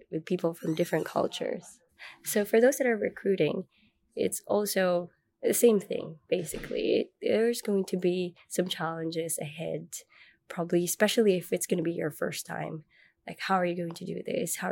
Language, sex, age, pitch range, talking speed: Finnish, female, 20-39, 170-210 Hz, 175 wpm